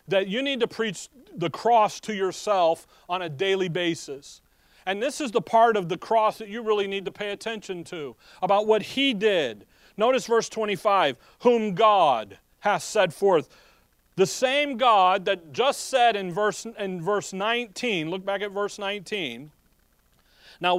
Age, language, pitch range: 40-59, English, 190-235 Hz